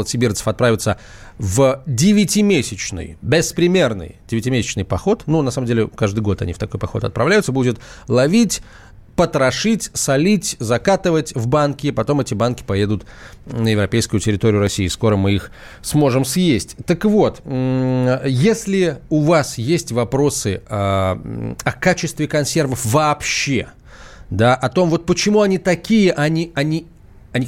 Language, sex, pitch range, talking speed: Russian, male, 115-165 Hz, 135 wpm